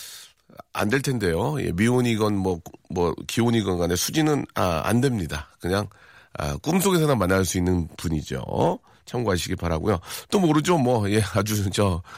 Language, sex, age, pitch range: Korean, male, 40-59, 90-130 Hz